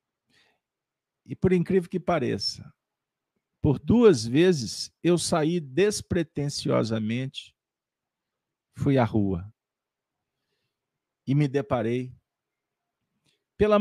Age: 50-69